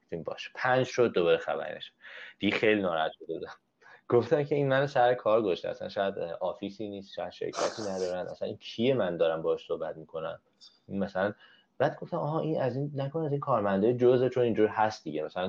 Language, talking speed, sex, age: Persian, 195 wpm, male, 30-49